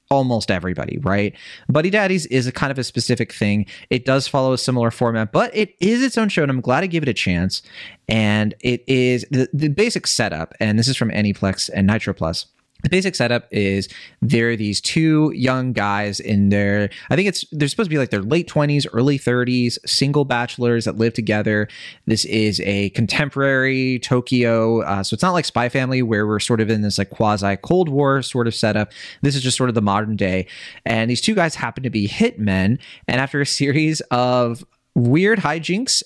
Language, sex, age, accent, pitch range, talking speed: English, male, 30-49, American, 105-140 Hz, 210 wpm